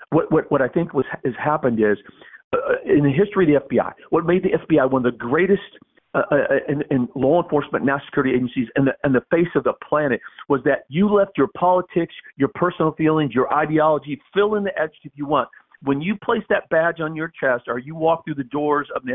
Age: 50-69